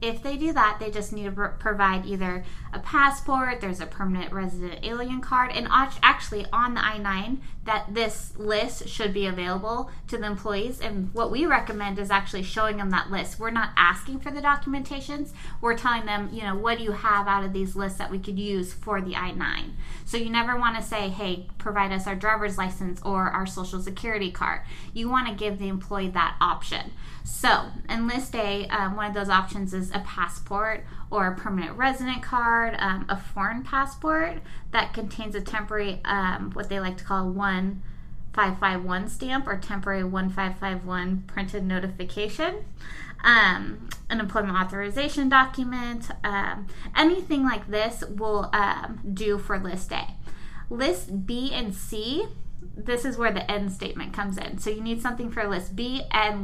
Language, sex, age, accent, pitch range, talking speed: English, female, 20-39, American, 195-235 Hz, 175 wpm